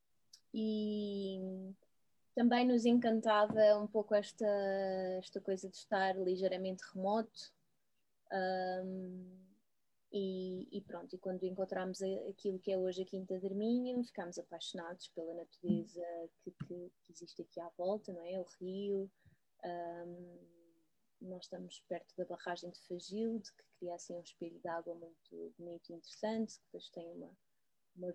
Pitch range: 175-205 Hz